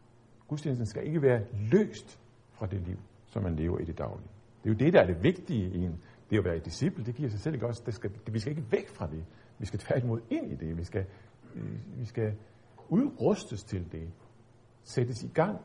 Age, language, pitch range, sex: 50-69, Danish, 95-120 Hz, male